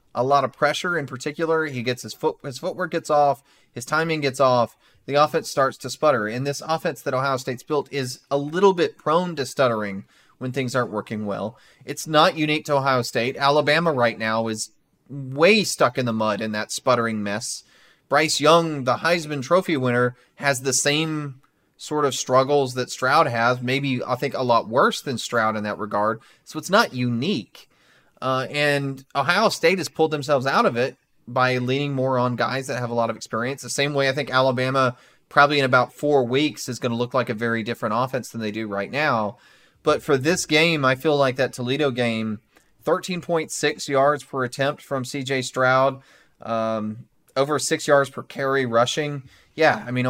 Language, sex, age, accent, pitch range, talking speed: English, male, 30-49, American, 120-145 Hz, 195 wpm